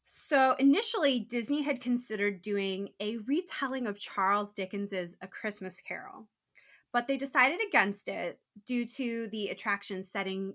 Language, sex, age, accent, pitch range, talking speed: English, female, 20-39, American, 195-260 Hz, 135 wpm